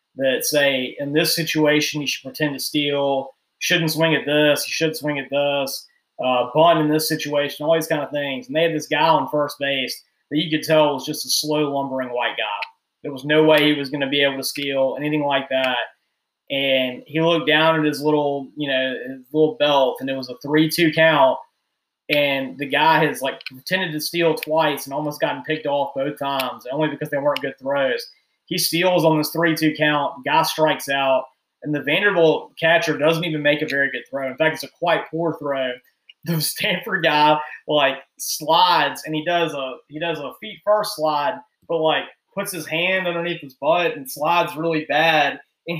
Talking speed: 205 wpm